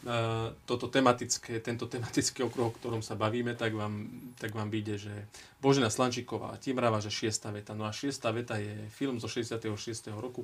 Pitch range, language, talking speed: 110-125 Hz, Slovak, 160 wpm